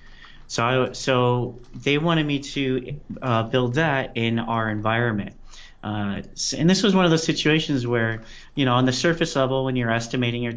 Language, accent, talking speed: English, American, 180 wpm